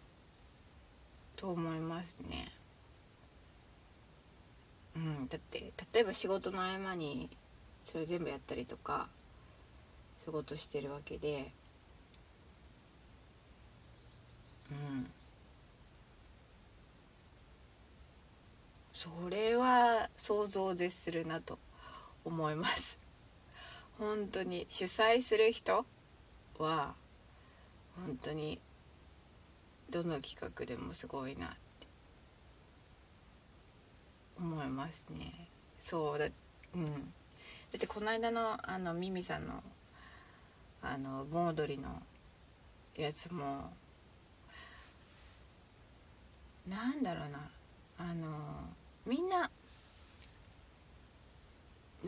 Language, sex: Japanese, female